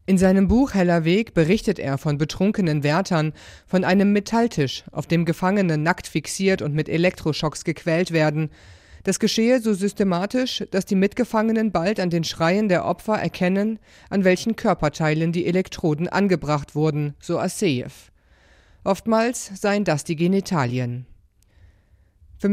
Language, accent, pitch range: German, German, 145-200 Hz